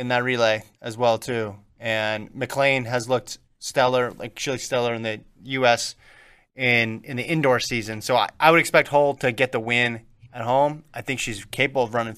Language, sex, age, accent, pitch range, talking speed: English, male, 20-39, American, 120-155 Hz, 200 wpm